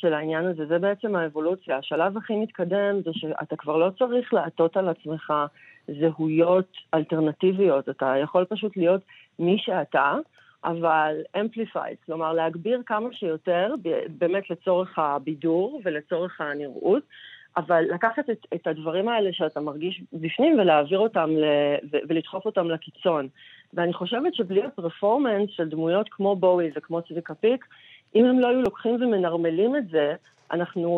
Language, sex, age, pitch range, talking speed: Hebrew, female, 40-59, 165-200 Hz, 140 wpm